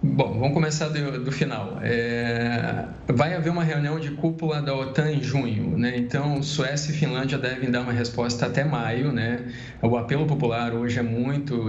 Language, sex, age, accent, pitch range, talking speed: Portuguese, male, 20-39, Brazilian, 120-145 Hz, 180 wpm